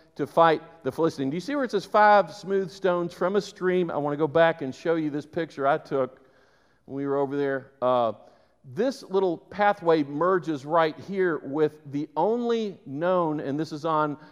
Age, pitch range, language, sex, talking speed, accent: 50-69, 130-165 Hz, English, male, 200 wpm, American